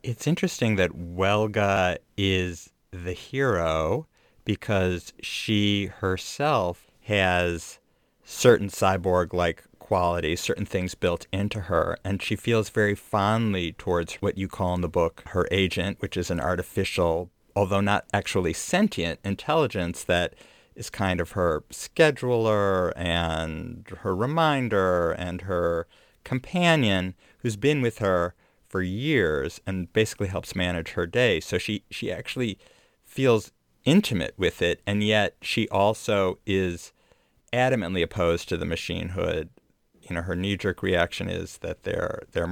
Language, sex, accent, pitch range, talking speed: English, male, American, 90-105 Hz, 130 wpm